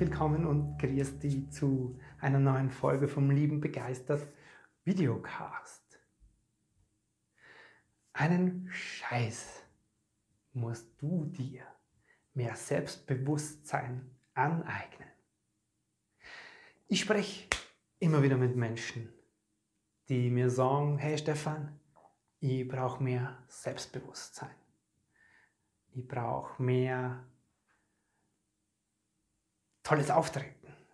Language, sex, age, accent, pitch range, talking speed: German, male, 30-49, German, 120-160 Hz, 75 wpm